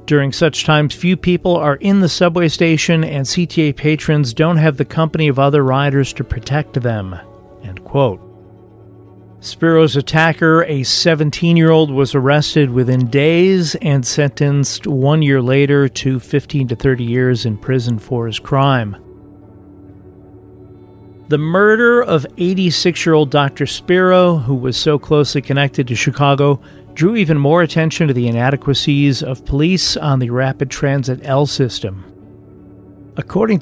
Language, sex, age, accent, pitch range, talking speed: English, male, 40-59, American, 120-160 Hz, 135 wpm